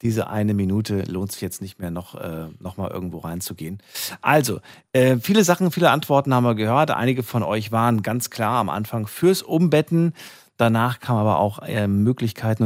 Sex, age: male, 40-59